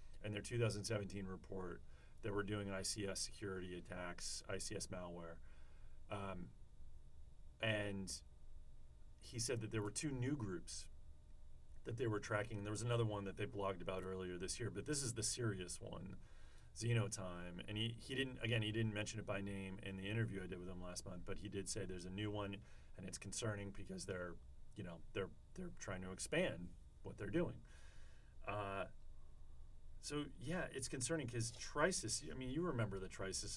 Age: 40-59